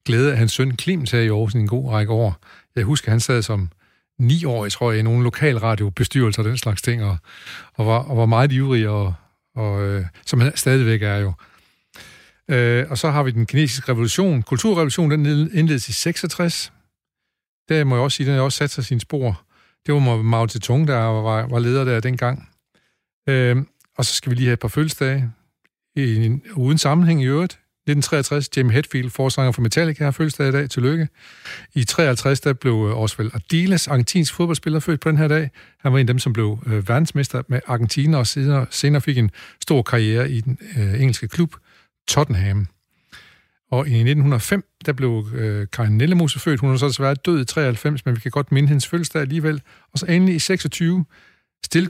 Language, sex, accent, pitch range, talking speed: Danish, male, native, 115-150 Hz, 190 wpm